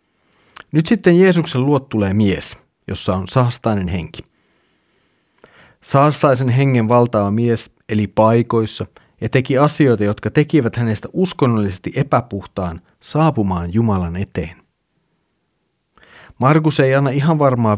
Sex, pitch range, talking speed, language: male, 105-135 Hz, 110 wpm, Finnish